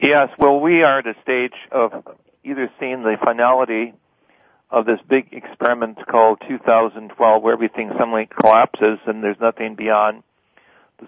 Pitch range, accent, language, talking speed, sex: 110-125 Hz, American, English, 145 wpm, male